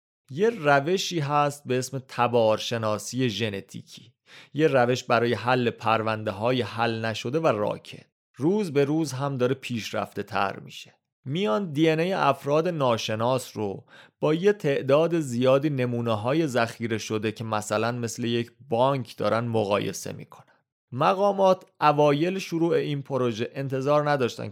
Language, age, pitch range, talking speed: Persian, 30-49, 115-155 Hz, 125 wpm